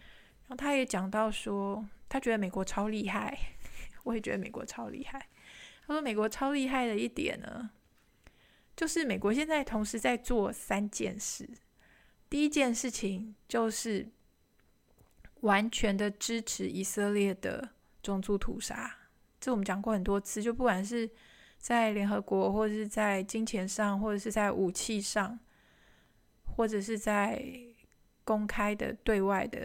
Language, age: Chinese, 20-39